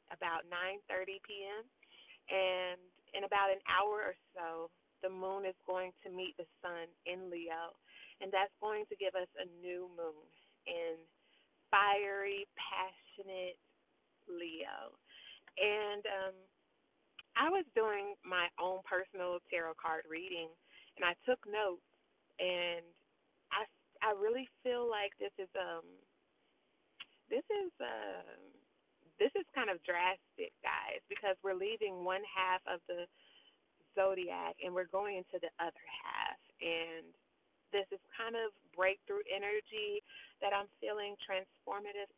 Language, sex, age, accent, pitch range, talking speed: English, female, 20-39, American, 180-215 Hz, 130 wpm